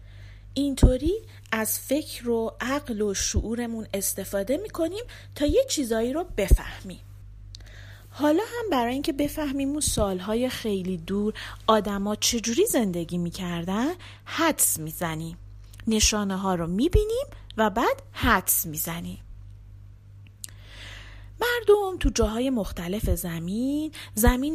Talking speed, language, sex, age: 110 wpm, Persian, female, 30-49